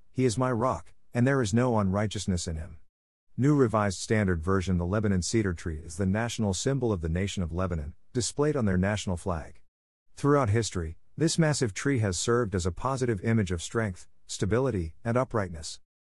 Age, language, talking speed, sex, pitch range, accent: 50-69, English, 180 wpm, male, 90-115 Hz, American